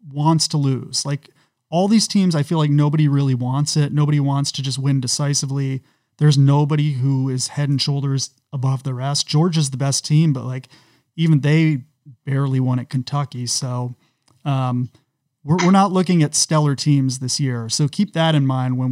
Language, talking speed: English, 185 wpm